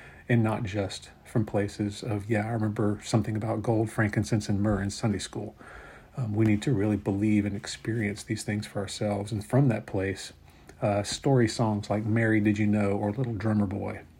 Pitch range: 105-115 Hz